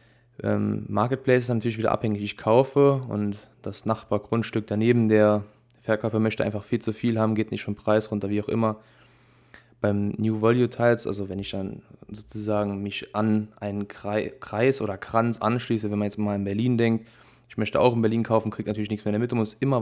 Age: 20-39